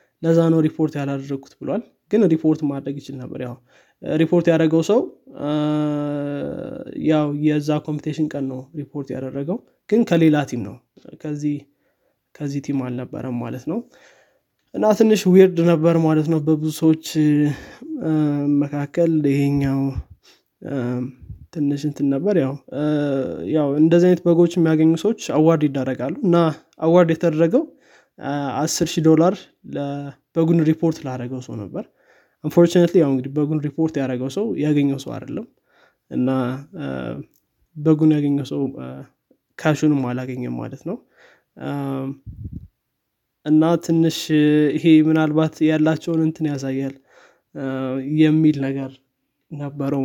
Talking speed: 110 wpm